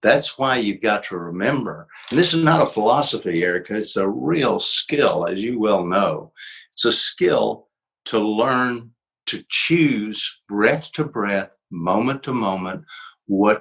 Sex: male